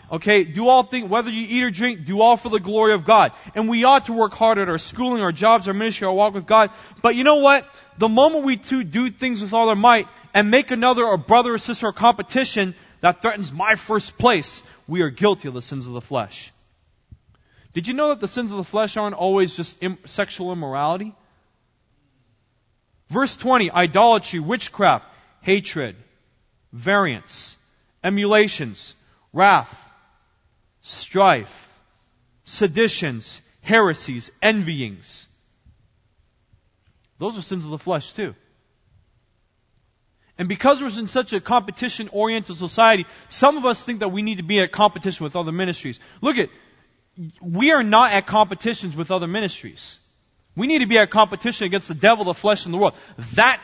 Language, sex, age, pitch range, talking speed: English, male, 20-39, 165-225 Hz, 170 wpm